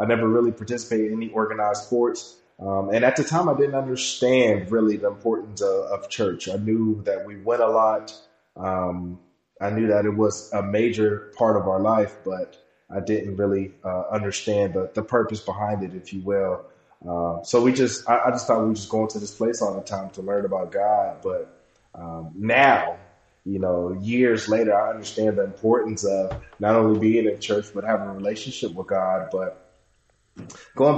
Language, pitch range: English, 100-115 Hz